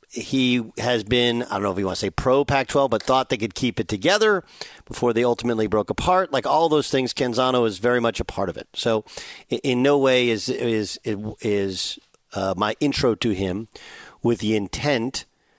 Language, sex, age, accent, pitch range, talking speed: English, male, 50-69, American, 105-130 Hz, 200 wpm